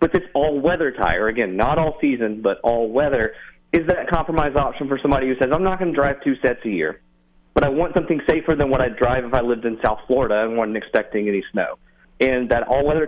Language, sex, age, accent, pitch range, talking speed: English, male, 30-49, American, 110-140 Hz, 225 wpm